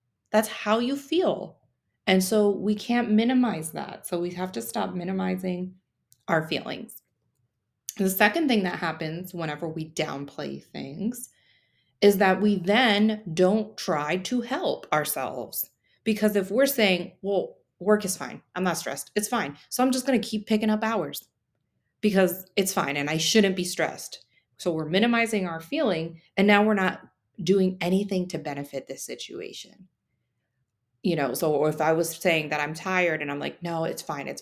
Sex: female